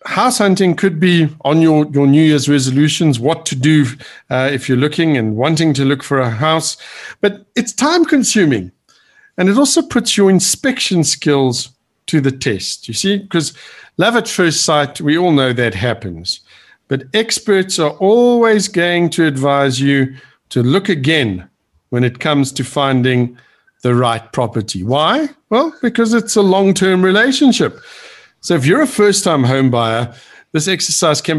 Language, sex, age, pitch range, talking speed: English, male, 50-69, 130-190 Hz, 165 wpm